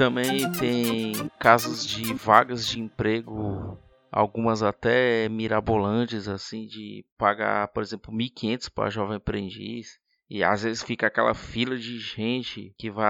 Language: Portuguese